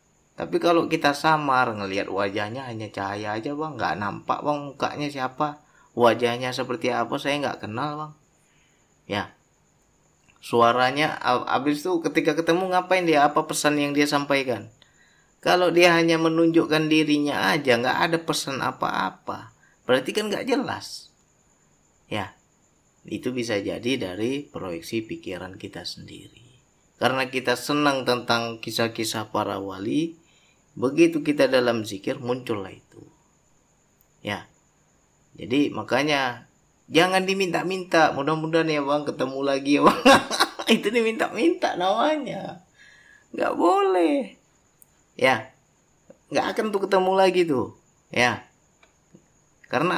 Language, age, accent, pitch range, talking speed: Indonesian, 30-49, native, 125-165 Hz, 115 wpm